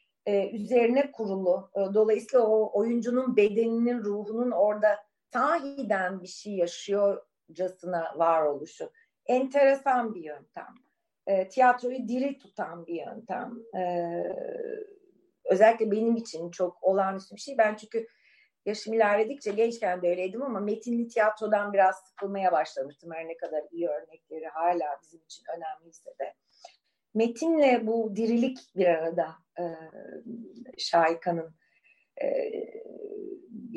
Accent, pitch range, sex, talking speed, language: native, 185-255 Hz, female, 105 wpm, Turkish